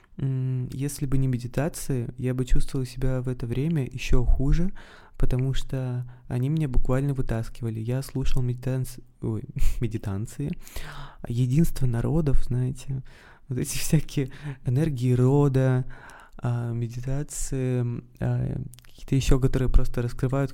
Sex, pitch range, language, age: male, 120-135 Hz, Russian, 20-39